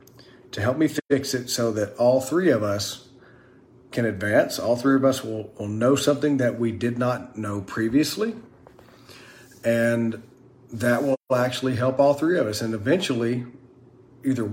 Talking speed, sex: 160 wpm, male